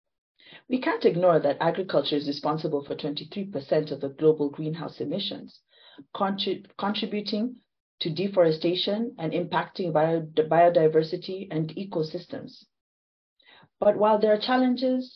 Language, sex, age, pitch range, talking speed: English, female, 40-59, 160-215 Hz, 115 wpm